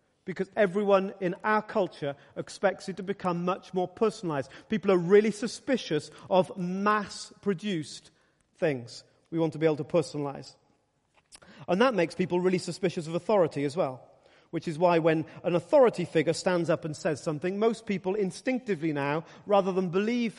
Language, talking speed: English, 160 wpm